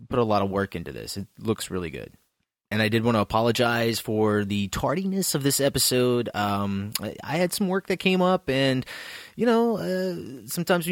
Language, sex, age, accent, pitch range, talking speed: English, male, 30-49, American, 105-135 Hz, 210 wpm